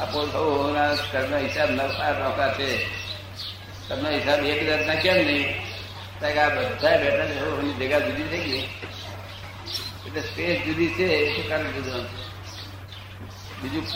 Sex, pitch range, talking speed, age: male, 95-140 Hz, 100 wpm, 60-79